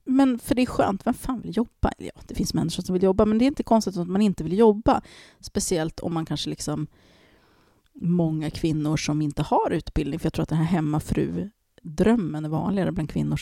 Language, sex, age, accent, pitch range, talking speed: English, female, 30-49, Swedish, 155-205 Hz, 215 wpm